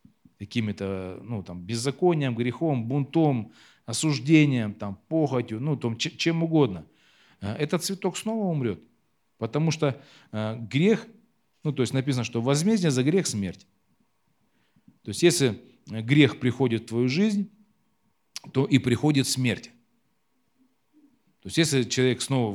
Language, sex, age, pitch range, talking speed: Russian, male, 40-59, 110-160 Hz, 120 wpm